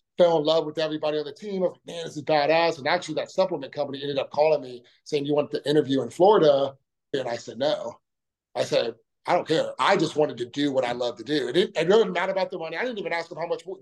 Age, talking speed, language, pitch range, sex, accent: 30-49, 285 wpm, English, 135-175 Hz, male, American